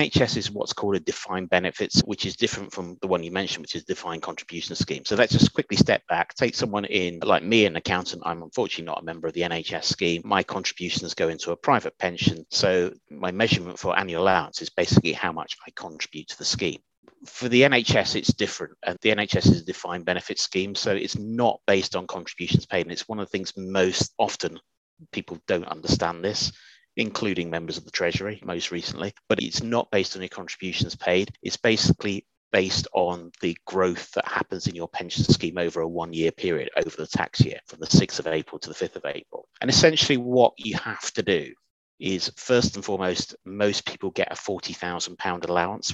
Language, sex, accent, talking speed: English, male, British, 205 wpm